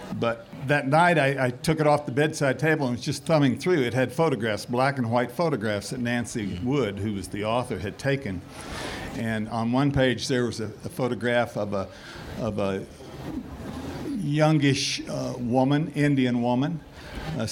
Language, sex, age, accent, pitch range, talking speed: English, male, 60-79, American, 120-145 Hz, 170 wpm